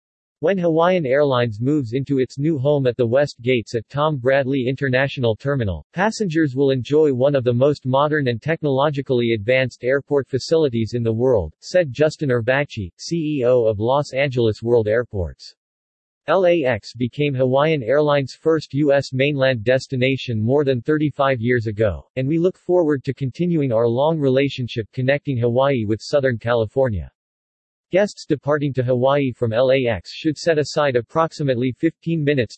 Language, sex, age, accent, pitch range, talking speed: English, male, 40-59, American, 120-145 Hz, 150 wpm